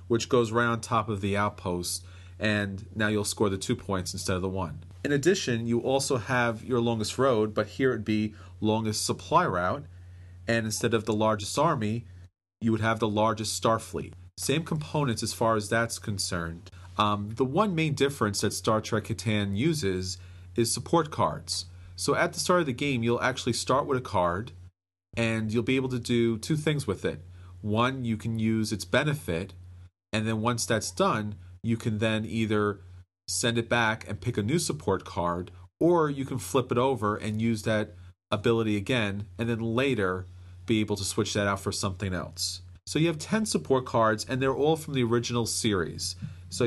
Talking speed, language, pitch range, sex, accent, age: 195 wpm, English, 90-120 Hz, male, American, 30-49